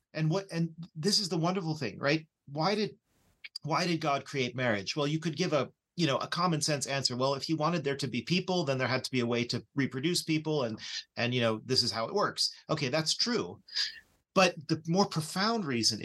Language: English